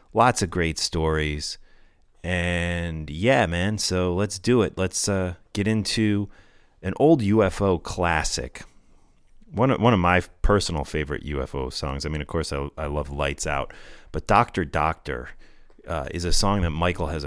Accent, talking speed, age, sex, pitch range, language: American, 165 wpm, 30-49, male, 75-95 Hz, English